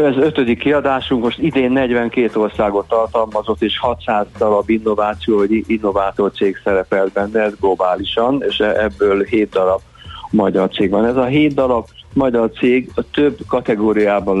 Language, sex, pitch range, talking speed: Hungarian, male, 100-125 Hz, 140 wpm